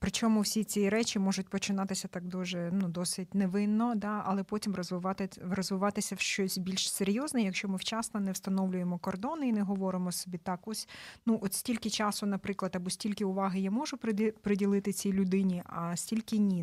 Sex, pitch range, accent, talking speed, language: female, 190-215 Hz, native, 175 wpm, Ukrainian